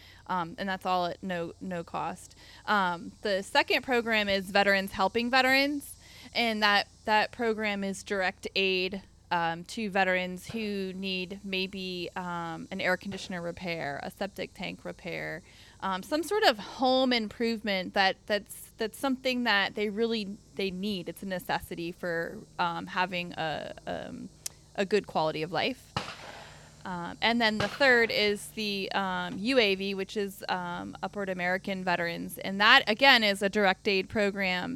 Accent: American